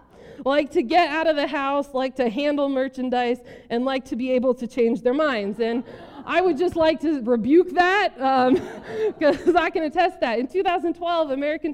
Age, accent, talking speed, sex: 20-39, American, 190 wpm, female